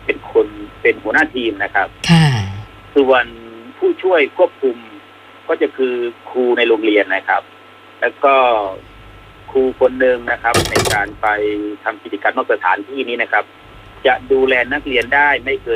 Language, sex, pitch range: Thai, male, 105-145 Hz